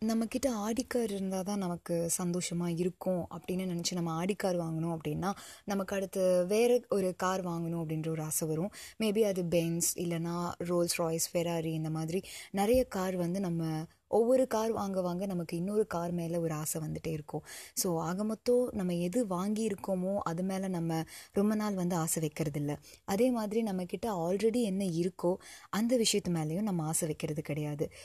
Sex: female